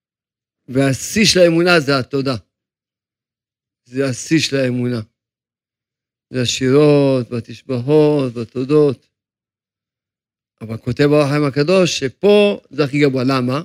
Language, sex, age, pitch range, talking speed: Hebrew, male, 50-69, 125-155 Hz, 95 wpm